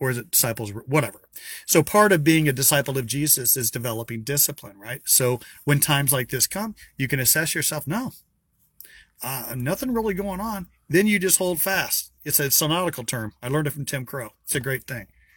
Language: English